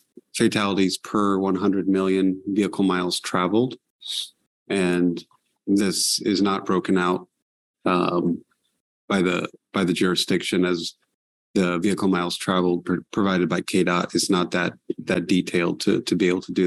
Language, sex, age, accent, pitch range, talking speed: English, male, 30-49, American, 90-95 Hz, 140 wpm